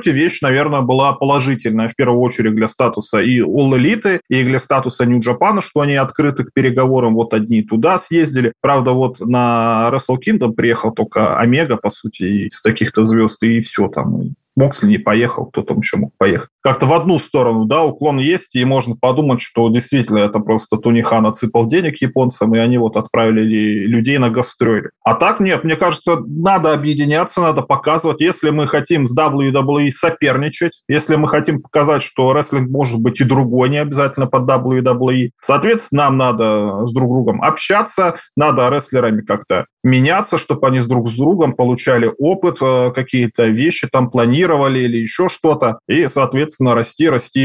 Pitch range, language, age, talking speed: 120-145 Hz, Russian, 20-39, 170 wpm